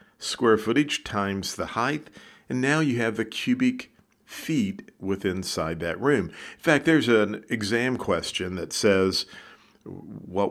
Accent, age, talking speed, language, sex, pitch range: American, 50-69, 145 wpm, English, male, 90-120 Hz